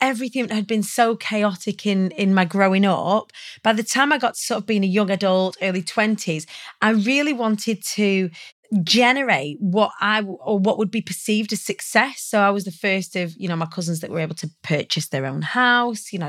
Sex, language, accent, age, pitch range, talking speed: female, English, British, 30-49, 180-225 Hz, 215 wpm